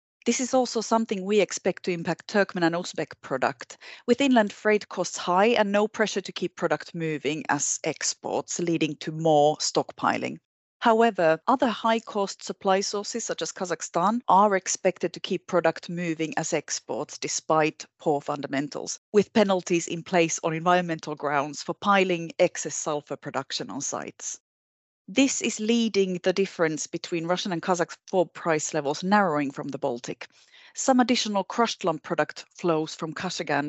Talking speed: 155 wpm